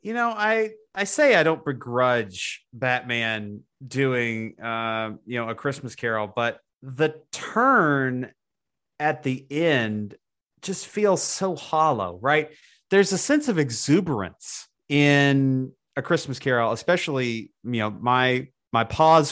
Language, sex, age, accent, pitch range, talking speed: English, male, 30-49, American, 125-170 Hz, 130 wpm